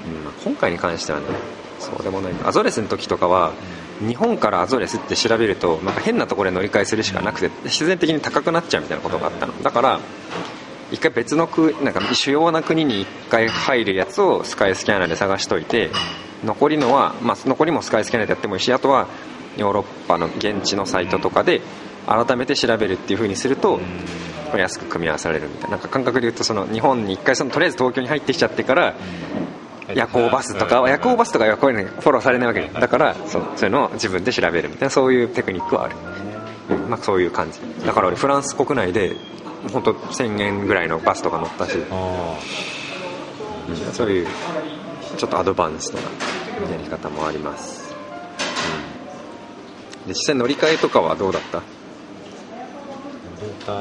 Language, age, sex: Japanese, 20-39, male